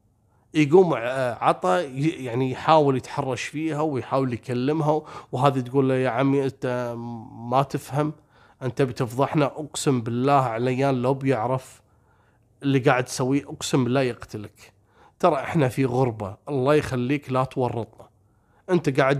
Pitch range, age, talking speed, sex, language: 120-150 Hz, 30-49, 120 wpm, male, Arabic